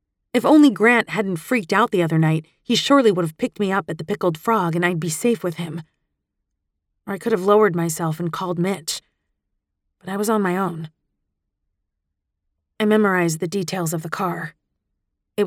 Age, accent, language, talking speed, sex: 30-49, American, English, 190 wpm, female